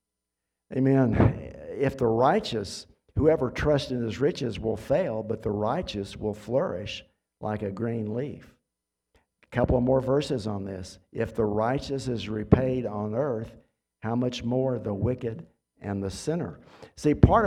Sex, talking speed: male, 150 wpm